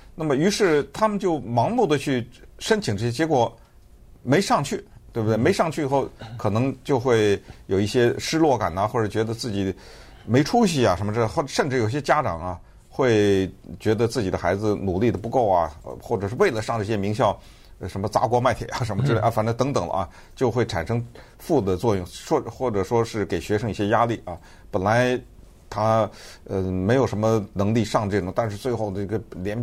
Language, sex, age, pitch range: Chinese, male, 50-69, 100-130 Hz